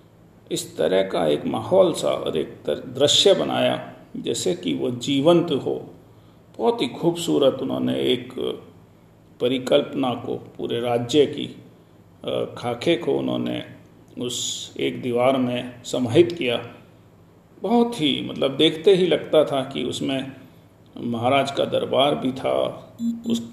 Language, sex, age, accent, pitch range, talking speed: Hindi, male, 40-59, native, 120-170 Hz, 125 wpm